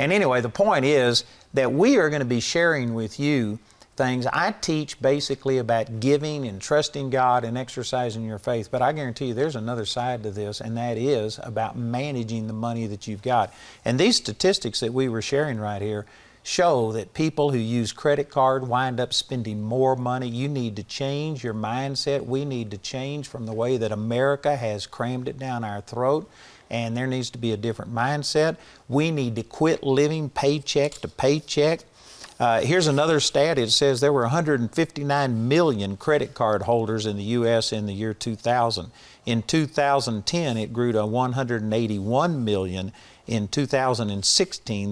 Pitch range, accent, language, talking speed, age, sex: 110-140 Hz, American, English, 180 wpm, 50-69, male